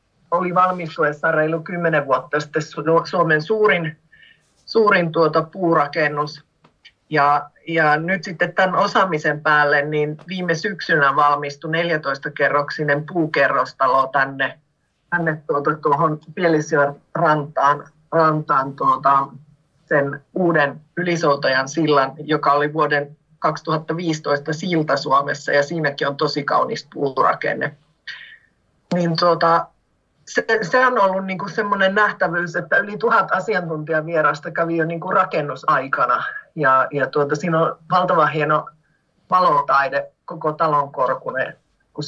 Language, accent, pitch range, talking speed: Finnish, native, 145-175 Hz, 105 wpm